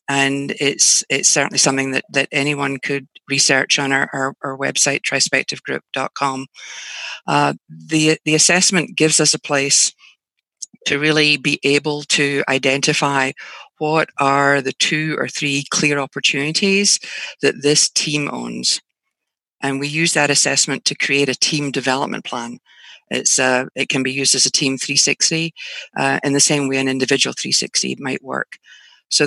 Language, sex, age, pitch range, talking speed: English, female, 50-69, 135-150 Hz, 150 wpm